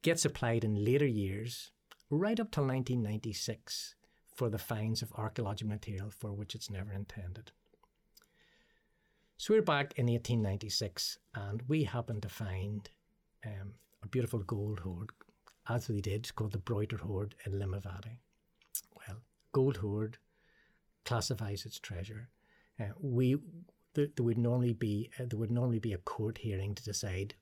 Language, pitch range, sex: English, 100-125 Hz, male